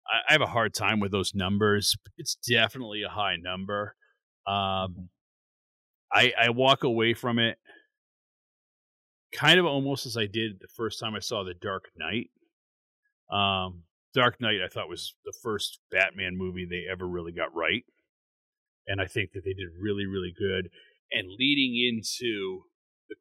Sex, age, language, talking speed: male, 30-49, English, 160 wpm